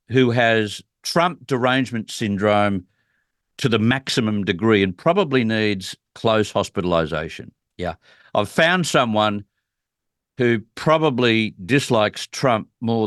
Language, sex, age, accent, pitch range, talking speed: English, male, 50-69, Australian, 105-135 Hz, 105 wpm